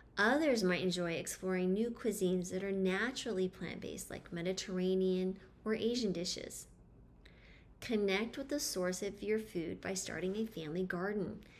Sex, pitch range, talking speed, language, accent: female, 185-220 Hz, 140 wpm, English, American